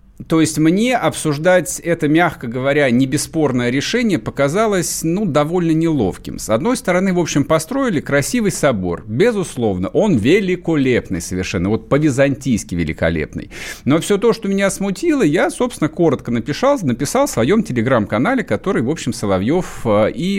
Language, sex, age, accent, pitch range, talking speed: Russian, male, 50-69, native, 140-205 Hz, 140 wpm